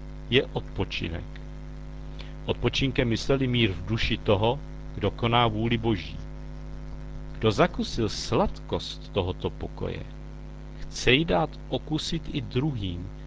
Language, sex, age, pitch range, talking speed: Czech, male, 50-69, 85-135 Hz, 105 wpm